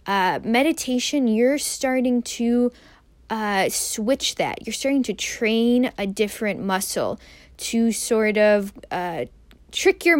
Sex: female